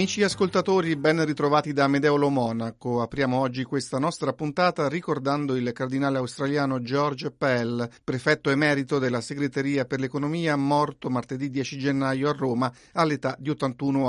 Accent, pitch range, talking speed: native, 135-155 Hz, 140 wpm